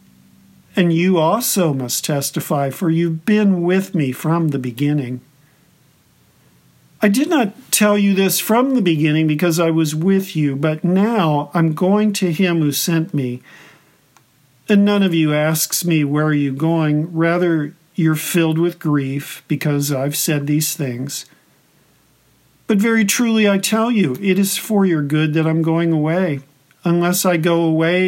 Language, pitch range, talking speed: English, 145-180 Hz, 160 wpm